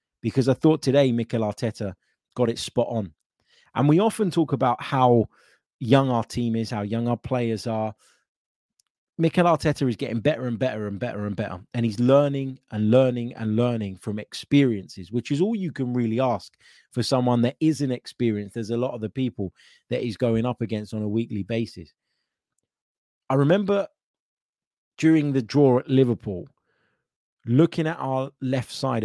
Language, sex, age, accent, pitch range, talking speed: English, male, 30-49, British, 105-130 Hz, 175 wpm